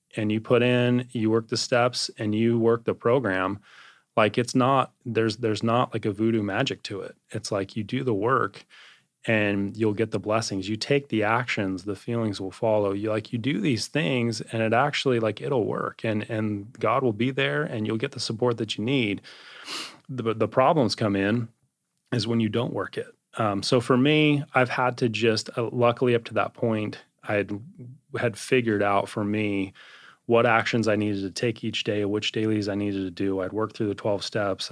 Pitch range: 105-120 Hz